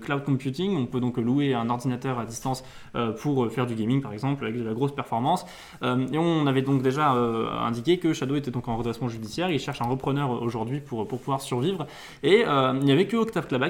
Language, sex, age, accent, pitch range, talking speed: French, male, 20-39, French, 120-145 Hz, 215 wpm